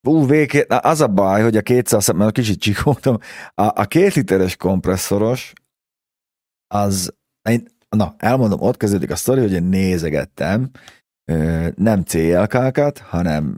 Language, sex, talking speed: Hungarian, male, 135 wpm